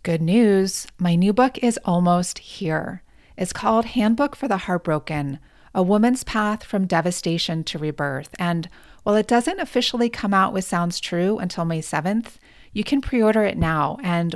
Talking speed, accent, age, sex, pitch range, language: 165 wpm, American, 30-49, female, 175-225 Hz, English